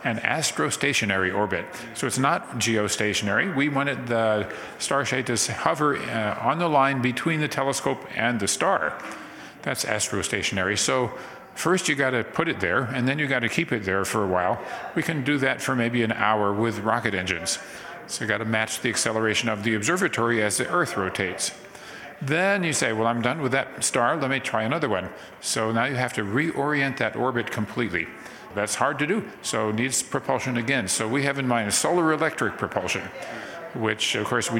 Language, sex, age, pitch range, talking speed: English, male, 50-69, 110-130 Hz, 200 wpm